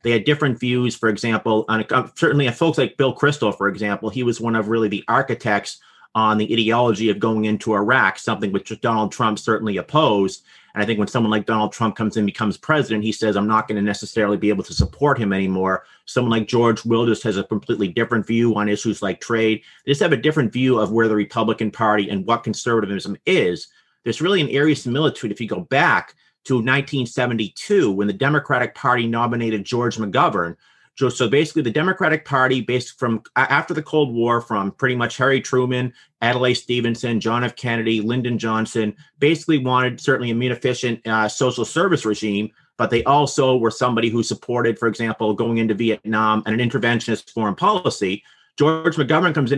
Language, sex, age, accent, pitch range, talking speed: English, male, 40-59, American, 110-125 Hz, 190 wpm